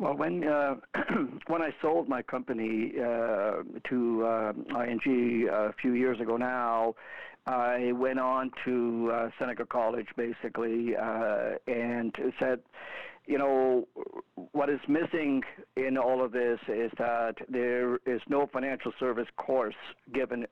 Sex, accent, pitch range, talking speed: male, American, 115-130 Hz, 135 wpm